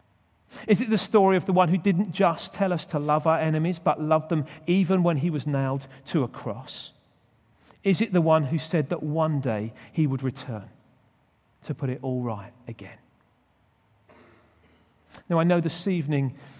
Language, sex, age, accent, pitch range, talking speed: English, male, 40-59, British, 130-170 Hz, 180 wpm